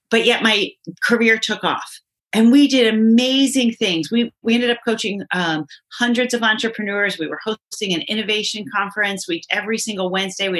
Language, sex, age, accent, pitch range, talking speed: English, female, 40-59, American, 175-220 Hz, 175 wpm